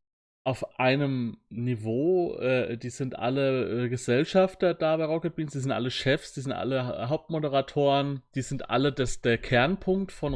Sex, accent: male, German